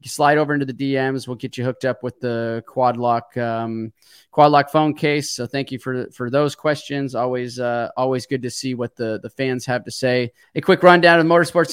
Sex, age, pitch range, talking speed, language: male, 20-39, 130-155 Hz, 225 wpm, English